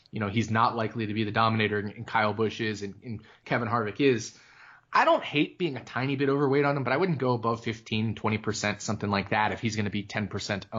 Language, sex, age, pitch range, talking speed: English, male, 20-39, 105-135 Hz, 245 wpm